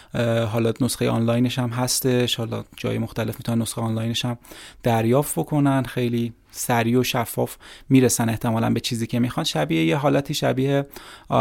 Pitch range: 115-135 Hz